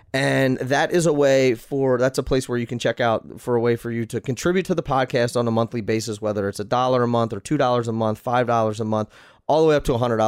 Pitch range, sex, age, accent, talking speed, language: 110-135 Hz, male, 30-49, American, 280 wpm, English